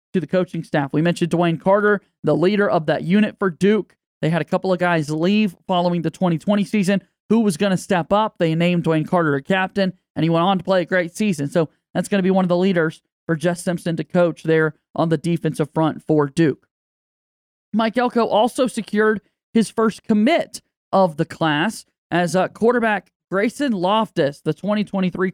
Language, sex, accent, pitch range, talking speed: English, male, American, 165-200 Hz, 200 wpm